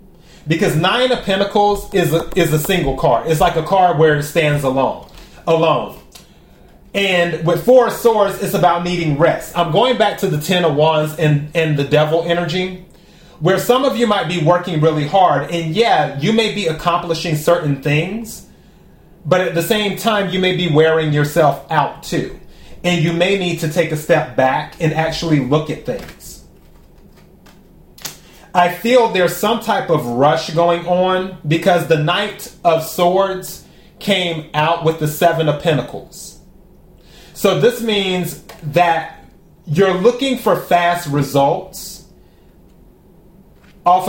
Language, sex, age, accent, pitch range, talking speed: English, male, 30-49, American, 155-190 Hz, 155 wpm